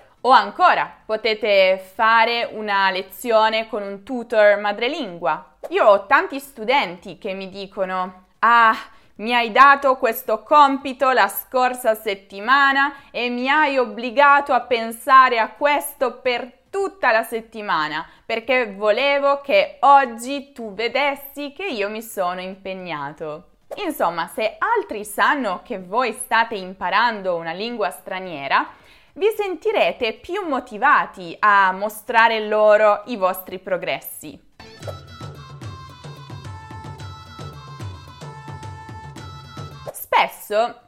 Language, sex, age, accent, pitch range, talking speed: Italian, female, 20-39, native, 190-260 Hz, 105 wpm